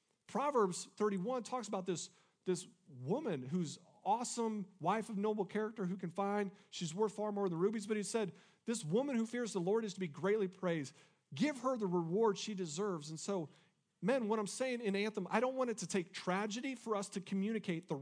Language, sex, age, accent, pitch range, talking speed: English, male, 40-59, American, 160-210 Hz, 205 wpm